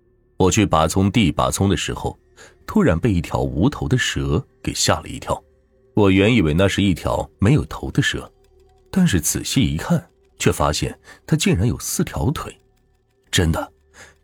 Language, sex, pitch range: Chinese, male, 80-115 Hz